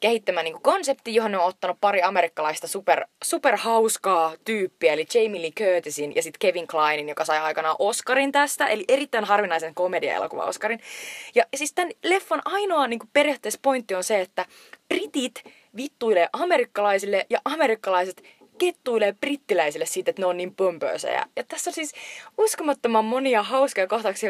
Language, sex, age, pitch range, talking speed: Finnish, female, 20-39, 175-260 Hz, 155 wpm